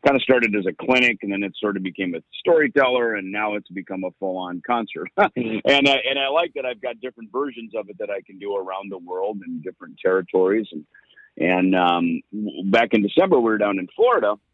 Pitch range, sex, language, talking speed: 95-125 Hz, male, English, 225 wpm